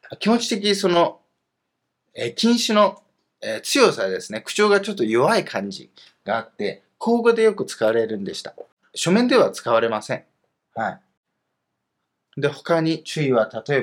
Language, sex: Japanese, male